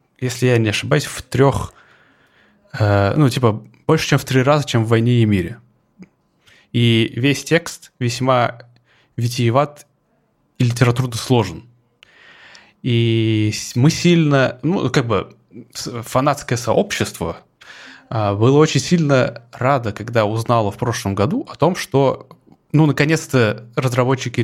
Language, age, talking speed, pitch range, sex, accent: Russian, 20-39, 120 wpm, 110-135 Hz, male, native